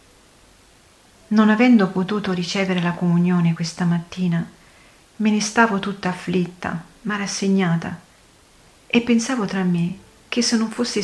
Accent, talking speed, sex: native, 125 wpm, female